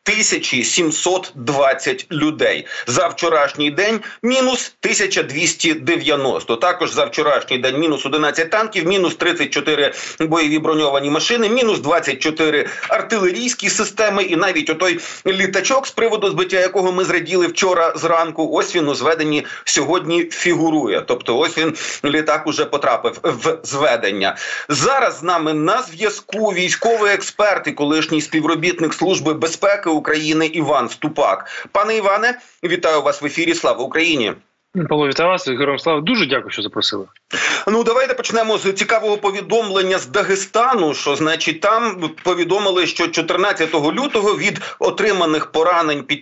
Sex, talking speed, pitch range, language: male, 135 wpm, 155-200 Hz, Ukrainian